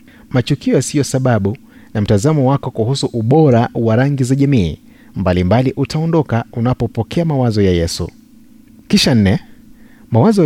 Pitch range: 115-180 Hz